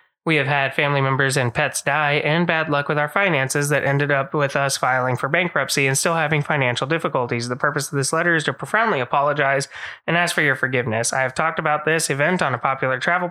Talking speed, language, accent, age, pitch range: 230 wpm, English, American, 20-39, 135-165 Hz